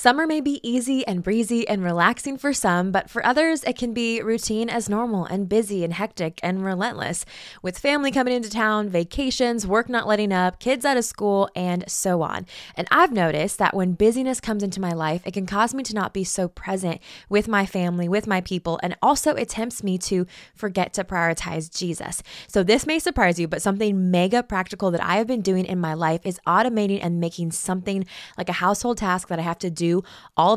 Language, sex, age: English, female, 20-39